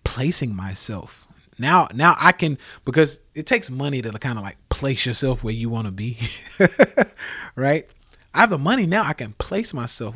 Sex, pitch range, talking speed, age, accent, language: male, 100-140 Hz, 185 wpm, 30-49, American, English